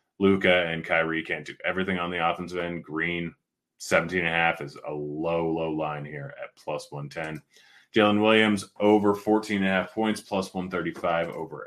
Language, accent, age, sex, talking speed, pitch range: English, American, 30-49, male, 170 wpm, 80-95 Hz